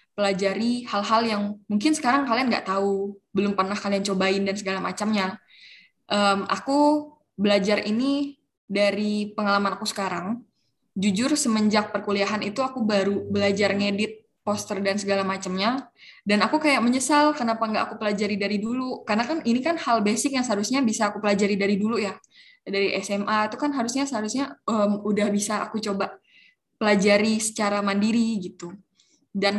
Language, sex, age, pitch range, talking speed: Indonesian, female, 10-29, 200-230 Hz, 150 wpm